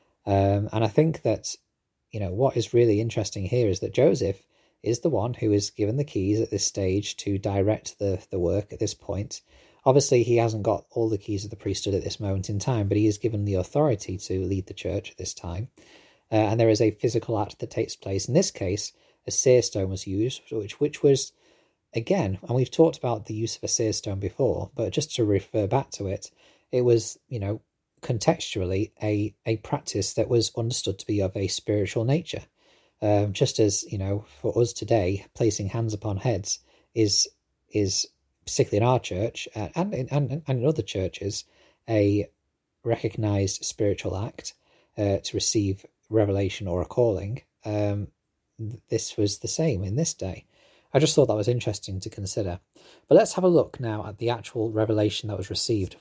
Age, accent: 30-49, British